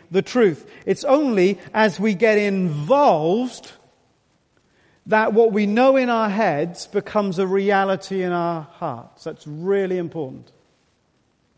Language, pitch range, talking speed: English, 155-220 Hz, 125 wpm